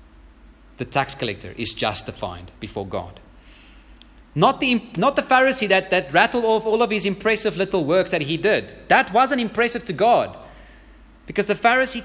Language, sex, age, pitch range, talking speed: English, male, 30-49, 155-230 Hz, 160 wpm